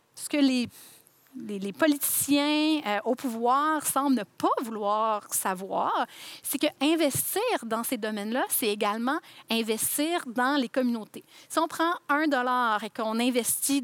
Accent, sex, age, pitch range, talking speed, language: Canadian, female, 30-49, 220-280 Hz, 145 wpm, French